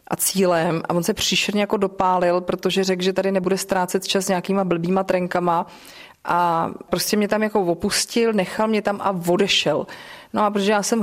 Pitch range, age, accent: 180-205 Hz, 30-49, native